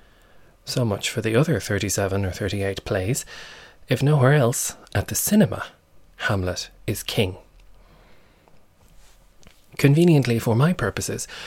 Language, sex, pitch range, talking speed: English, male, 100-120 Hz, 115 wpm